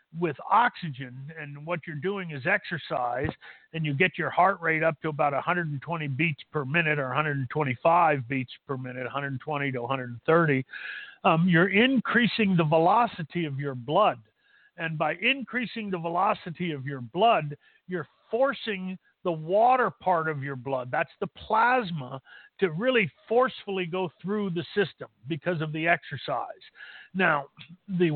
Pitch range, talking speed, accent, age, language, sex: 140-185 Hz, 145 wpm, American, 50-69, English, male